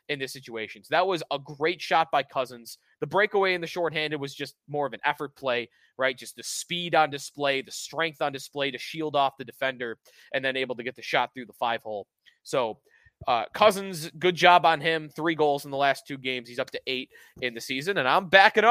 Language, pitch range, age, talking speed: English, 130-170 Hz, 20-39, 235 wpm